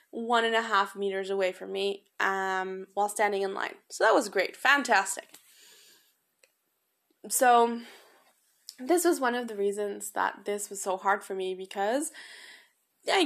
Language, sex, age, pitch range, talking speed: English, female, 20-39, 200-245 Hz, 155 wpm